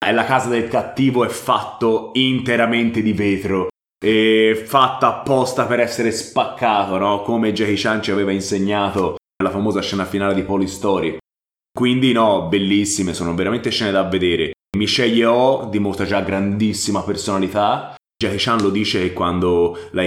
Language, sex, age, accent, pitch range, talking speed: Italian, male, 20-39, native, 90-105 Hz, 155 wpm